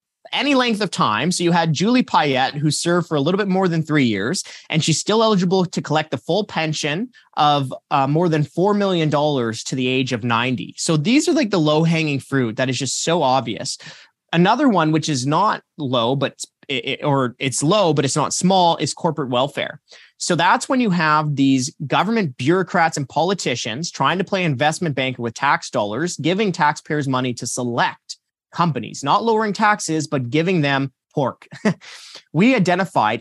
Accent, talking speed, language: American, 185 wpm, English